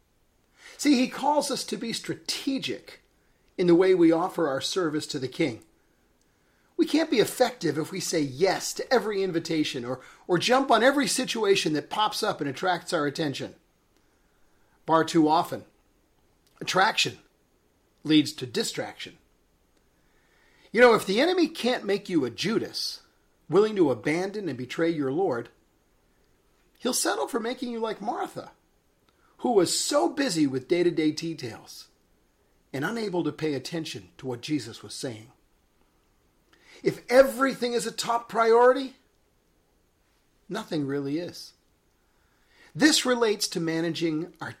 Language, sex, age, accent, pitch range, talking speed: English, male, 40-59, American, 155-250 Hz, 140 wpm